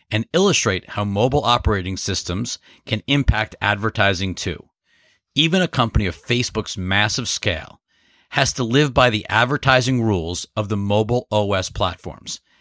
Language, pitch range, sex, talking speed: English, 95-125 Hz, male, 140 wpm